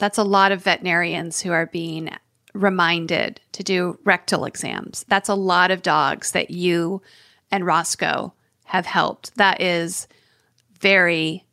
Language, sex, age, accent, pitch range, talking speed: English, female, 40-59, American, 170-205 Hz, 140 wpm